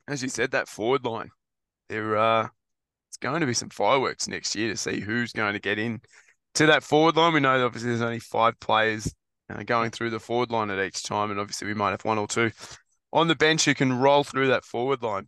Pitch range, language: 110-135 Hz, English